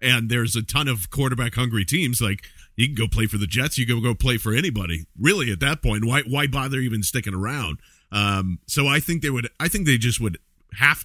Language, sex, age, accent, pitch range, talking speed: English, male, 40-59, American, 110-140 Hz, 240 wpm